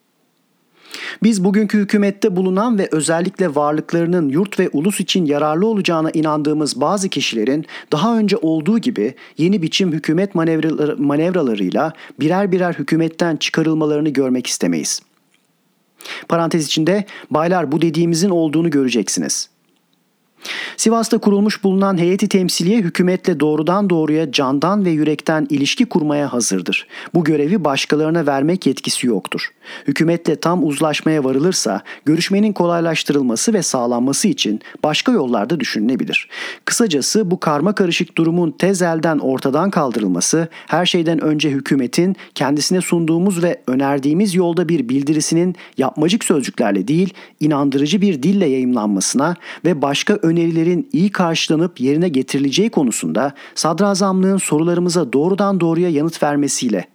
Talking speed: 115 wpm